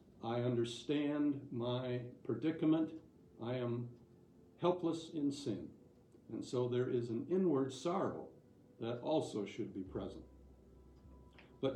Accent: American